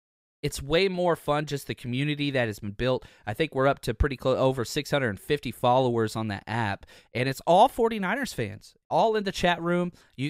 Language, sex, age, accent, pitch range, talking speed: English, male, 30-49, American, 125-160 Hz, 205 wpm